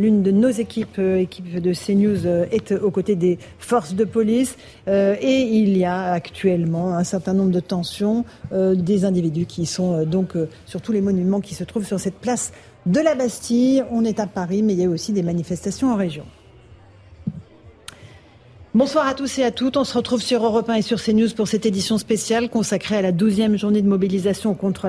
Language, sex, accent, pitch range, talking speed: French, female, French, 190-230 Hz, 210 wpm